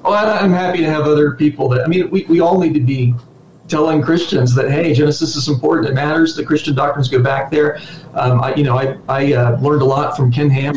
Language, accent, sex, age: English, American, male, 40-59